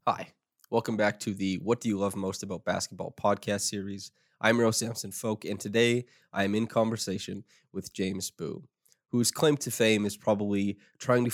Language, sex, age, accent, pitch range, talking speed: English, male, 20-39, American, 100-115 Hz, 180 wpm